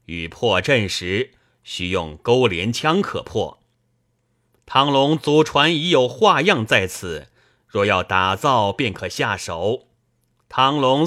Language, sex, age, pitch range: Chinese, male, 30-49, 110-165 Hz